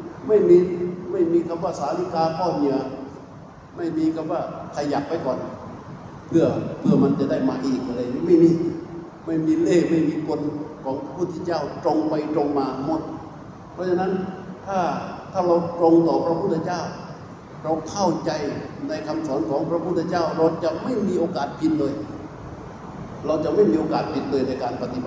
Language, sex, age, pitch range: Thai, male, 60-79, 145-170 Hz